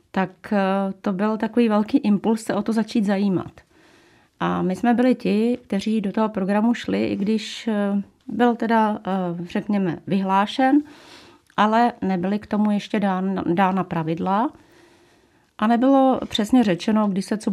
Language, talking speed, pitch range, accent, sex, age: Czech, 145 wpm, 195-235 Hz, native, female, 40-59